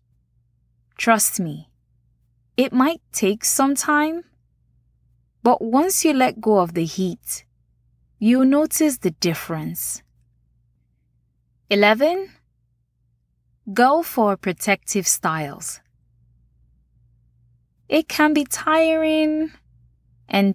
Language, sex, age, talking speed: English, female, 20-39, 85 wpm